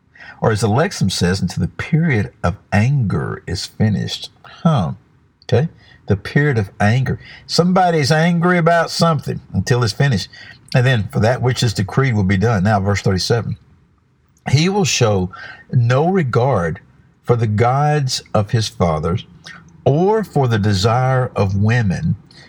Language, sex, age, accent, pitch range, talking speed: English, male, 60-79, American, 100-140 Hz, 145 wpm